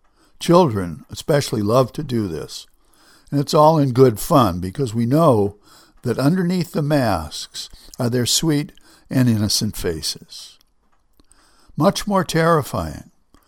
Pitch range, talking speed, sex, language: 105-145 Hz, 125 wpm, male, English